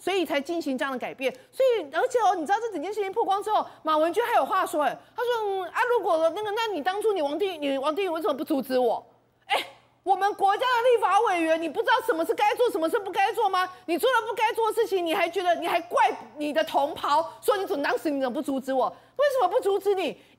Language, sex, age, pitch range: Chinese, female, 30-49, 310-435 Hz